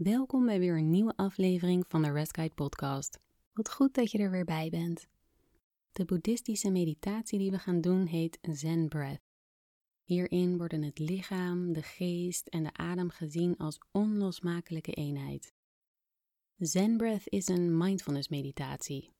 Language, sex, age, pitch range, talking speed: Dutch, female, 30-49, 160-195 Hz, 150 wpm